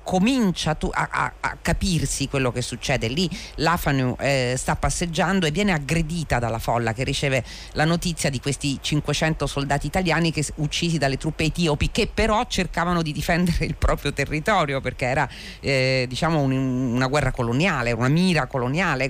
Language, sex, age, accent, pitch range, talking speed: Italian, female, 40-59, native, 130-175 Hz, 160 wpm